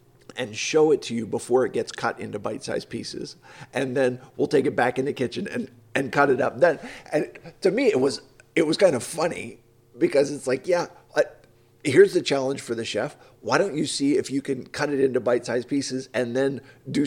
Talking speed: 220 wpm